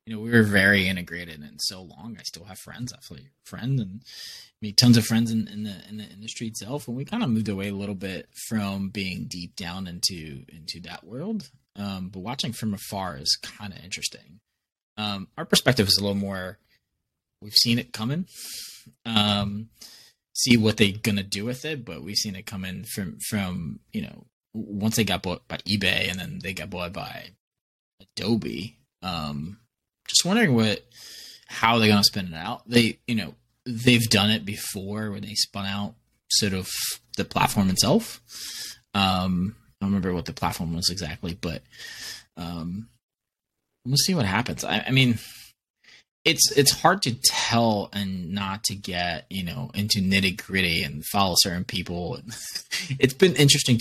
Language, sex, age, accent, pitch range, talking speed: English, male, 20-39, American, 95-115 Hz, 175 wpm